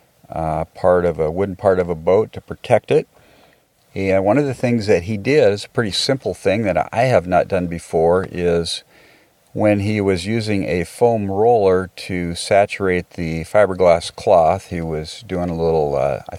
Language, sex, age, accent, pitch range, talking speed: English, male, 50-69, American, 85-105 Hz, 185 wpm